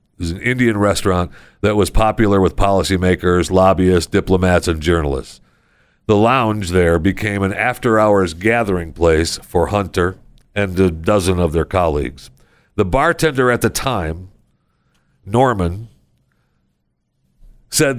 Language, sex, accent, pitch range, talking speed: English, male, American, 90-115 Hz, 125 wpm